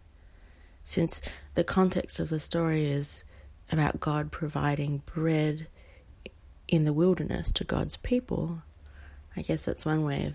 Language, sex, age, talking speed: English, female, 30-49, 135 wpm